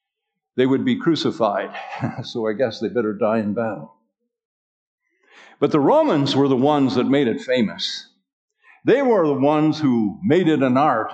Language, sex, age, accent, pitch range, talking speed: English, male, 50-69, American, 110-175 Hz, 165 wpm